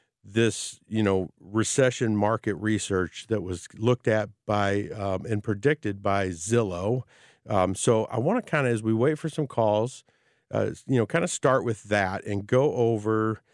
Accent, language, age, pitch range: American, English, 50-69, 100-125 Hz